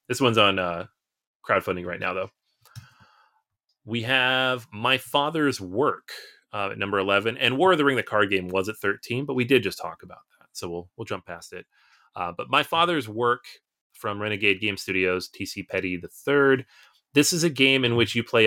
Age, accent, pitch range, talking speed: 30-49, American, 95-125 Hz, 200 wpm